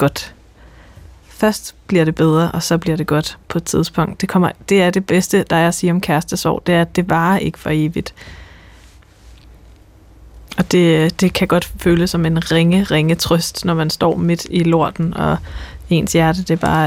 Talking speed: 190 wpm